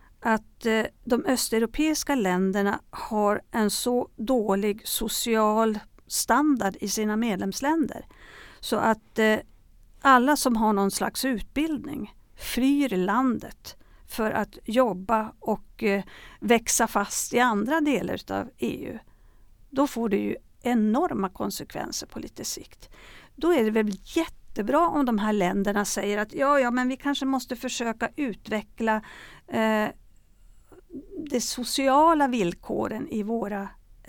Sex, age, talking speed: female, 50-69, 125 wpm